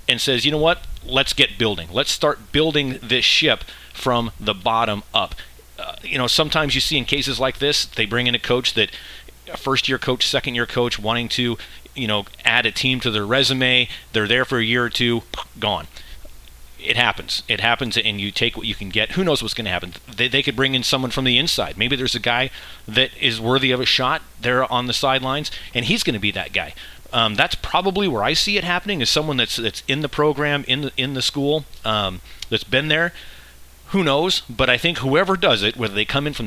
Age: 30-49